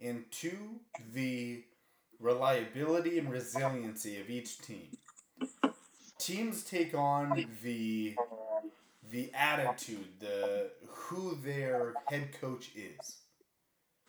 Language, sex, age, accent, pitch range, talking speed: English, male, 30-49, American, 120-175 Hz, 90 wpm